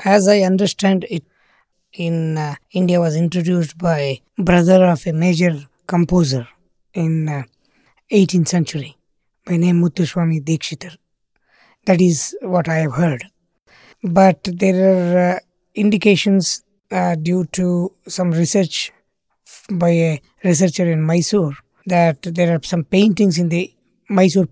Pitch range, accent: 160-190 Hz, Indian